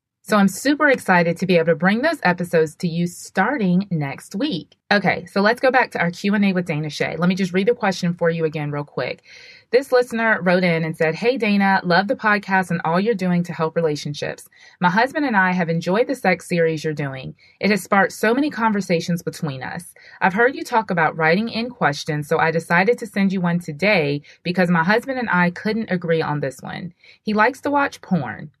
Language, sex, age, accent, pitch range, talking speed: English, female, 20-39, American, 165-230 Hz, 220 wpm